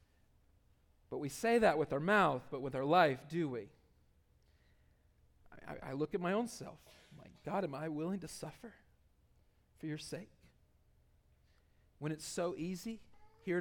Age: 40-59